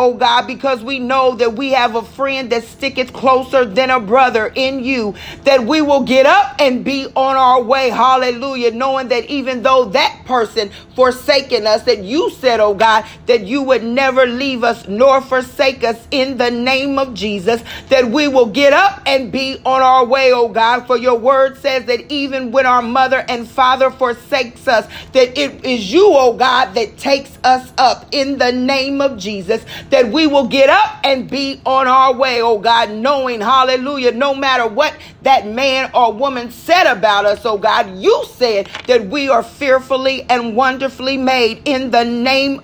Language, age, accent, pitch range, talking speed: English, 40-59, American, 245-275 Hz, 190 wpm